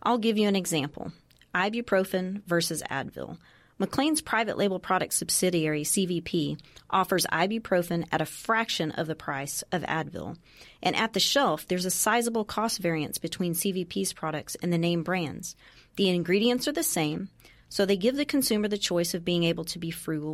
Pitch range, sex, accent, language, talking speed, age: 165-200 Hz, female, American, English, 170 wpm, 40-59